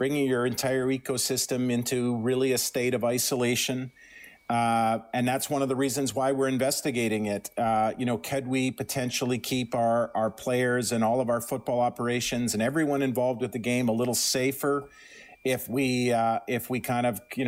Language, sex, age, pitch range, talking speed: English, male, 50-69, 120-135 Hz, 185 wpm